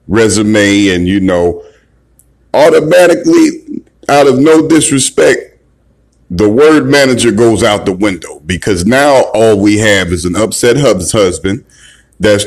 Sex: male